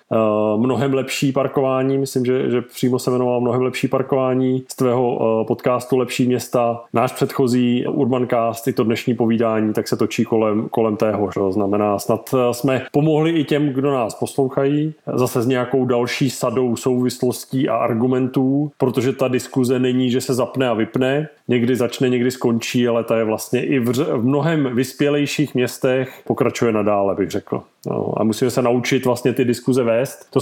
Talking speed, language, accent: 170 wpm, Czech, native